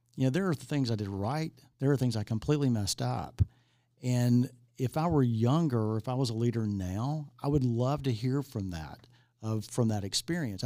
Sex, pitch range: male, 110-135 Hz